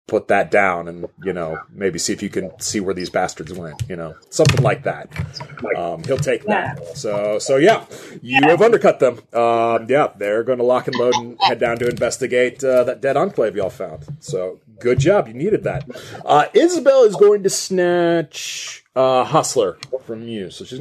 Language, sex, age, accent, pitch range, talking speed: English, male, 30-49, American, 115-170 Hz, 200 wpm